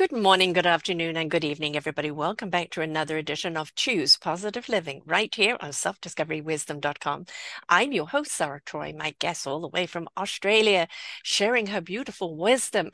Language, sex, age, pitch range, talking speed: English, female, 50-69, 160-225 Hz, 170 wpm